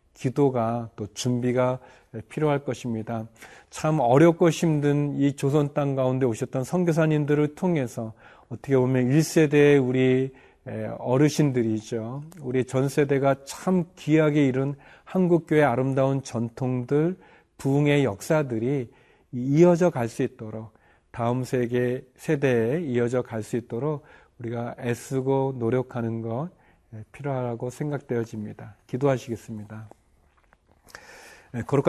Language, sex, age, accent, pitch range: Korean, male, 40-59, native, 125-150 Hz